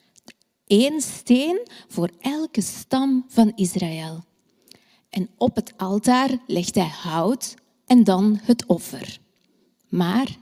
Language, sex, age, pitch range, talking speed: Dutch, female, 30-49, 185-240 Hz, 110 wpm